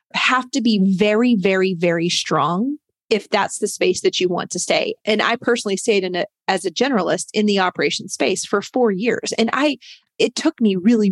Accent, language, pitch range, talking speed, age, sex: American, English, 185-225 Hz, 205 wpm, 30-49, female